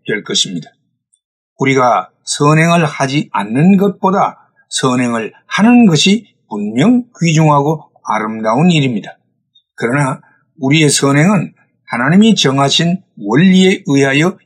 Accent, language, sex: native, Korean, male